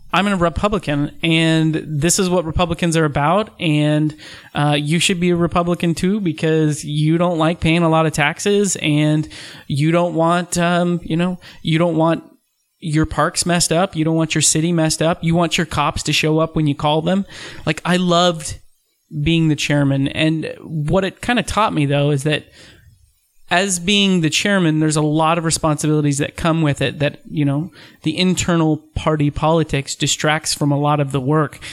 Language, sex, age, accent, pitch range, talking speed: English, male, 30-49, American, 145-170 Hz, 195 wpm